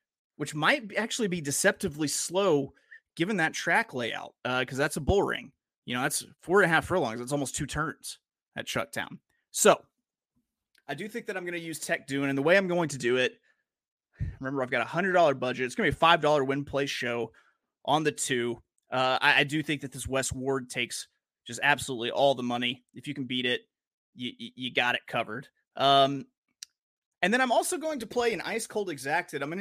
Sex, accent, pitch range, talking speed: male, American, 130-175 Hz, 215 wpm